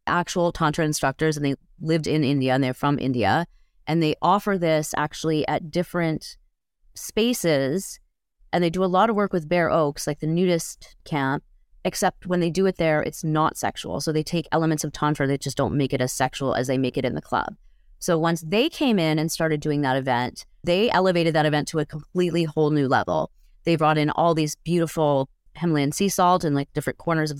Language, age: English, 30-49